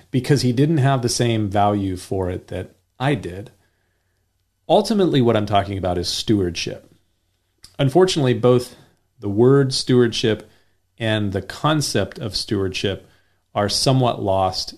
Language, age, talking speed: English, 40-59, 130 wpm